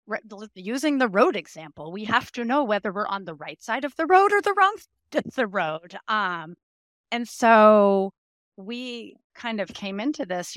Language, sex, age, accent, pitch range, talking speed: English, female, 30-49, American, 160-215 Hz, 185 wpm